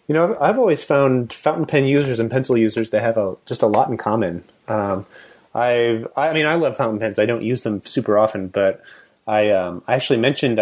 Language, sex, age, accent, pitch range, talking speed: English, male, 30-49, American, 105-135 Hz, 230 wpm